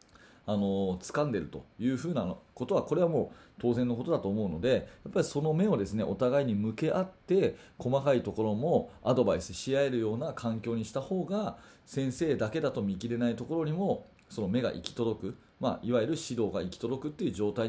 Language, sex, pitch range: Japanese, male, 105-145 Hz